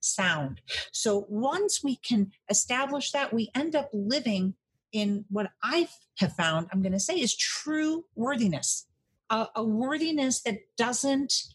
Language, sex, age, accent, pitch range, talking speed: English, female, 50-69, American, 180-230 Hz, 145 wpm